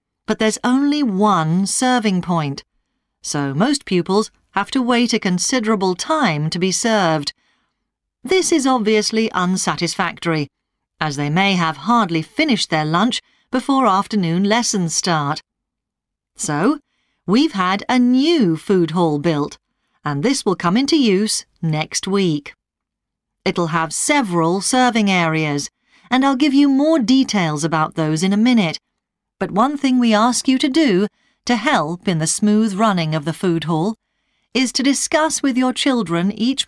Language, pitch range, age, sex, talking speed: English, 170-250 Hz, 40-59, female, 150 wpm